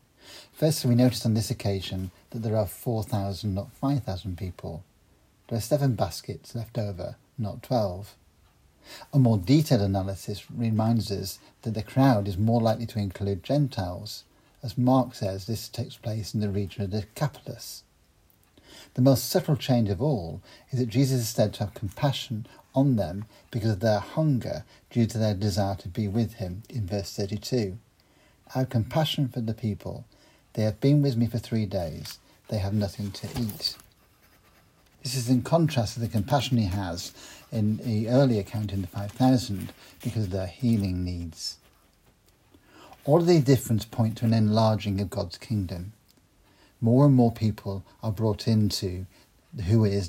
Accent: British